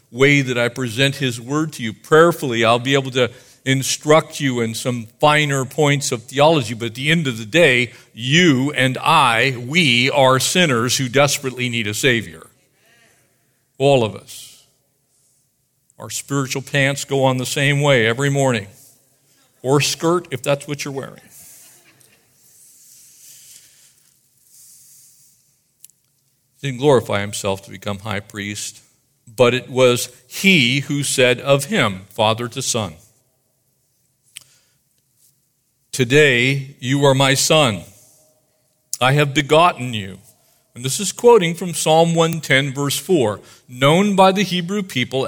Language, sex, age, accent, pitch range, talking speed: English, male, 50-69, American, 125-145 Hz, 135 wpm